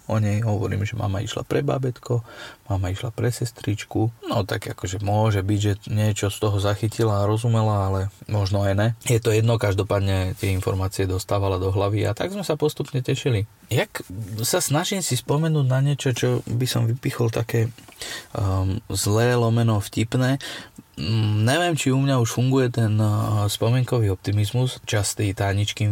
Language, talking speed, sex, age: Slovak, 160 wpm, male, 30-49